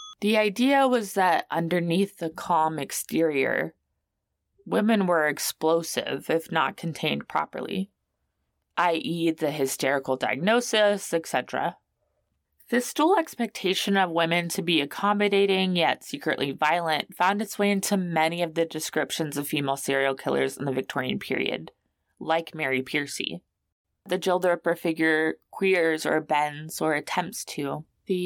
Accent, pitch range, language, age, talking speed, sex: American, 150-195 Hz, English, 20-39, 125 wpm, female